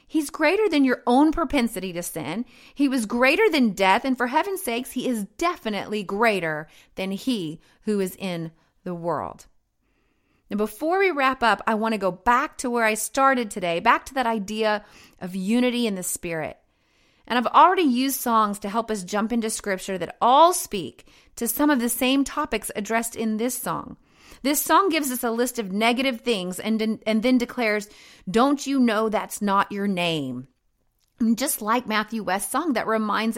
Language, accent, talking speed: English, American, 185 wpm